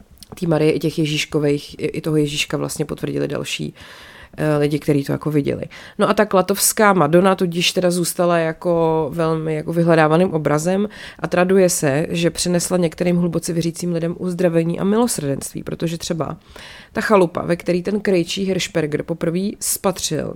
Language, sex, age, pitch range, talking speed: Czech, female, 30-49, 160-190 Hz, 155 wpm